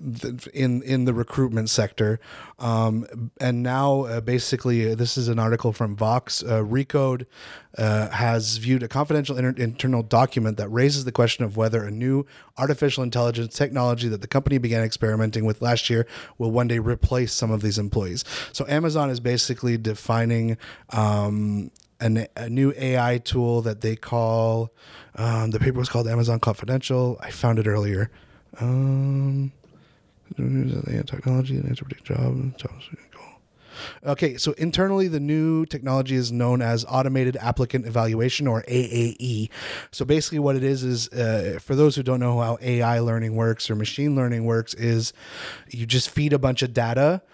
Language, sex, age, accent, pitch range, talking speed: French, male, 30-49, American, 115-130 Hz, 155 wpm